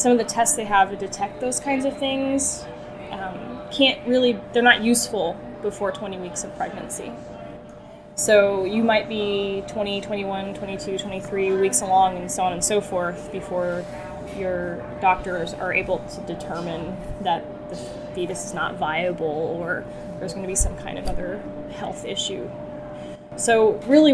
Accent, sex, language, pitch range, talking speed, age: American, female, English, 185-220 Hz, 160 wpm, 10-29